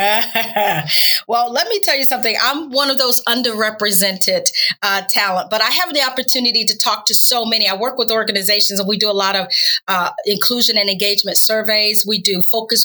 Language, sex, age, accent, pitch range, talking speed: English, female, 40-59, American, 200-235 Hz, 190 wpm